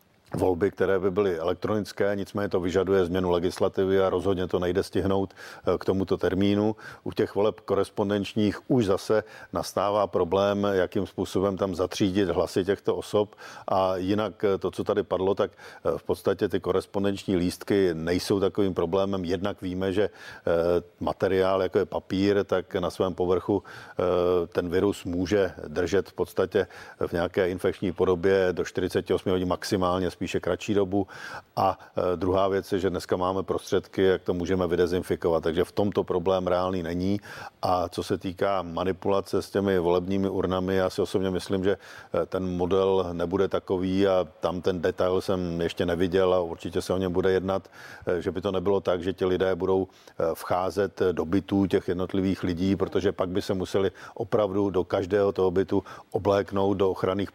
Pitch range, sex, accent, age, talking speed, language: 90-100 Hz, male, native, 50-69, 160 wpm, Czech